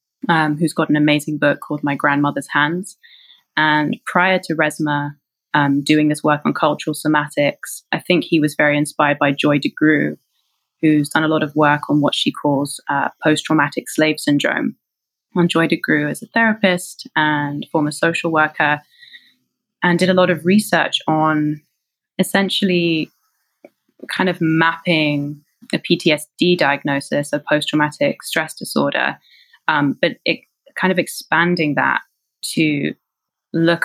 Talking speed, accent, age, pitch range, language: 140 wpm, British, 20-39, 150-175 Hz, English